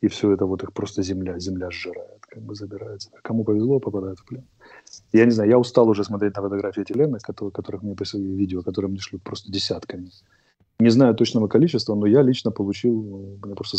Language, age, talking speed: Russian, 30-49, 205 wpm